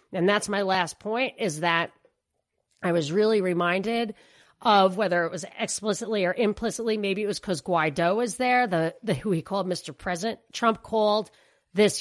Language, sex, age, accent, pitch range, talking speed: English, female, 40-59, American, 170-215 Hz, 175 wpm